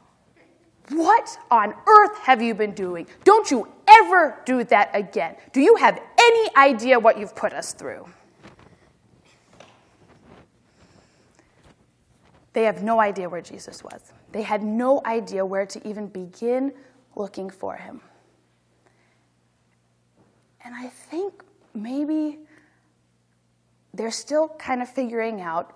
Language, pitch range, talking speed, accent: English, 170-250 Hz, 120 wpm, American